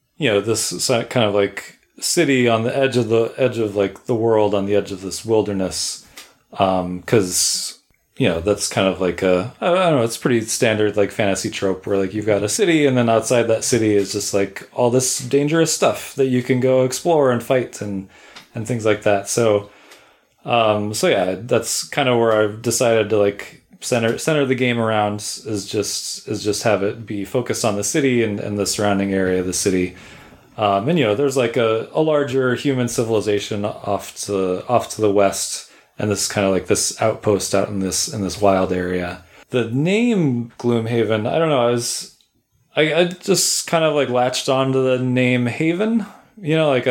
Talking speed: 205 wpm